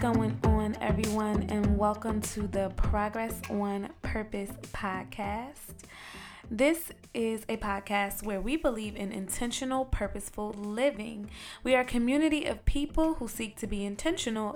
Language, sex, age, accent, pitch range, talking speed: English, female, 20-39, American, 200-255 Hz, 135 wpm